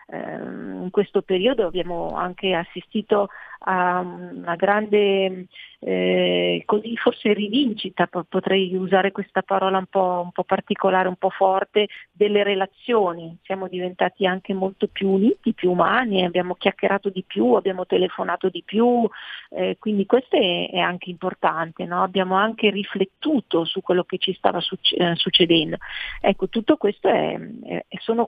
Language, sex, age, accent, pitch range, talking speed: Italian, female, 40-59, native, 180-210 Hz, 130 wpm